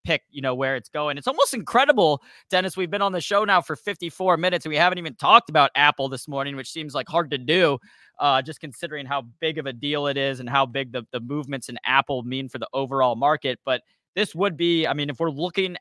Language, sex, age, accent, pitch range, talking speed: English, male, 20-39, American, 135-175 Hz, 250 wpm